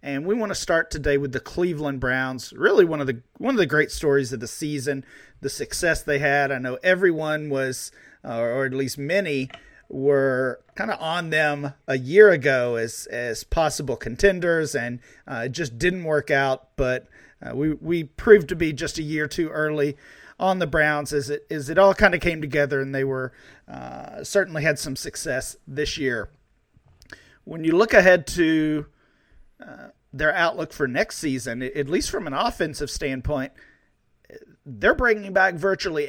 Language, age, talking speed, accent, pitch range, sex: English, 40-59, 180 wpm, American, 140-185 Hz, male